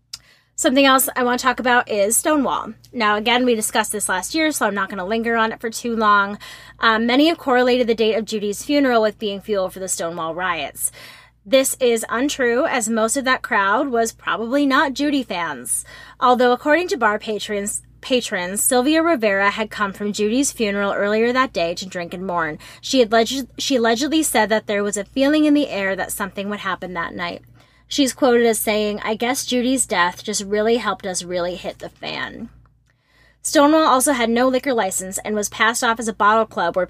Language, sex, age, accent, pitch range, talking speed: English, female, 20-39, American, 200-250 Hz, 205 wpm